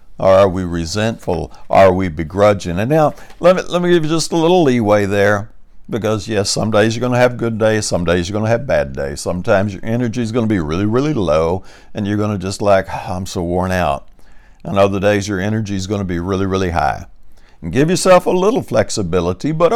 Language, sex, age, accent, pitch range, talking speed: English, male, 60-79, American, 95-125 Hz, 230 wpm